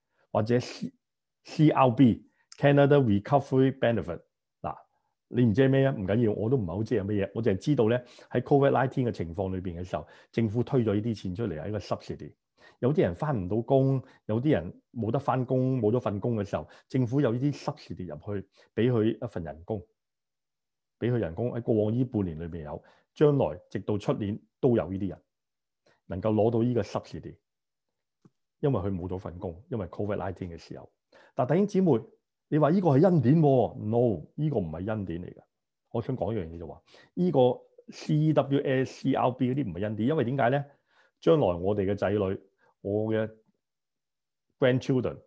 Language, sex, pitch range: Chinese, male, 100-130 Hz